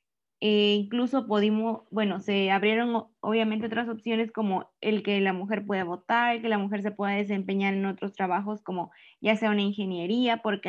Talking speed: 180 wpm